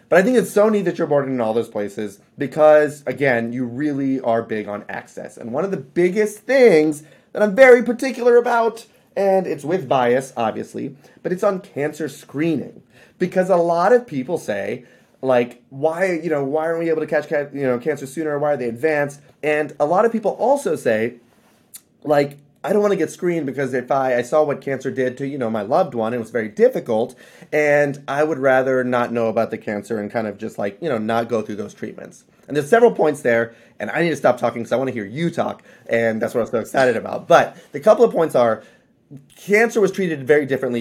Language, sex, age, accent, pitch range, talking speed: English, male, 30-49, American, 120-165 Hz, 230 wpm